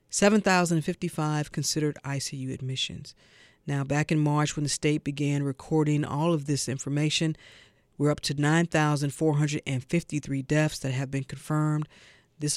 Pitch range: 145-200 Hz